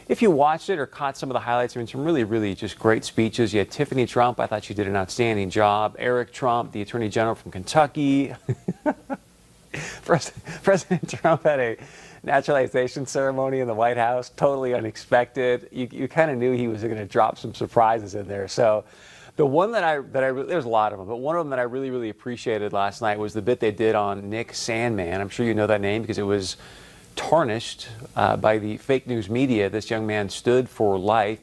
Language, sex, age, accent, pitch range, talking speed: English, male, 40-59, American, 105-125 Hz, 220 wpm